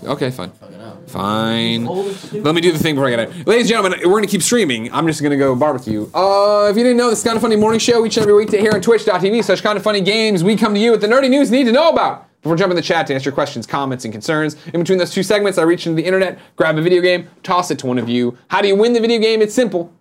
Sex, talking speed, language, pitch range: male, 320 wpm, English, 140-195 Hz